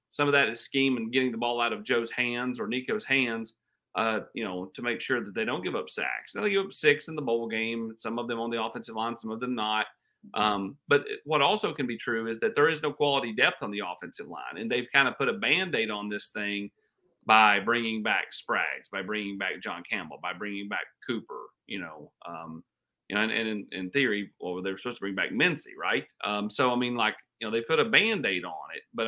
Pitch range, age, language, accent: 105-130 Hz, 40-59, English, American